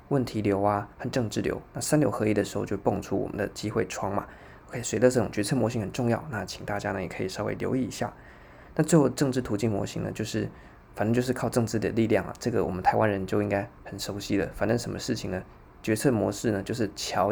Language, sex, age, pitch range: Chinese, male, 20-39, 100-115 Hz